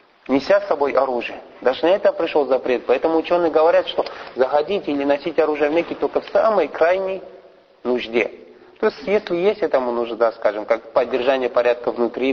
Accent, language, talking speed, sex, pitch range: native, Russian, 170 wpm, male, 130-175 Hz